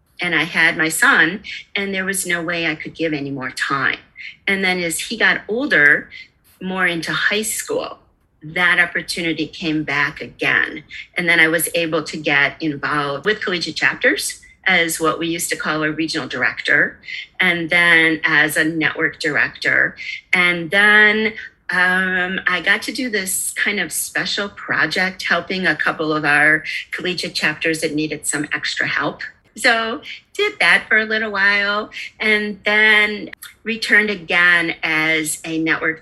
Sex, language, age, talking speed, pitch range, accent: female, English, 40-59, 160 wpm, 155-200 Hz, American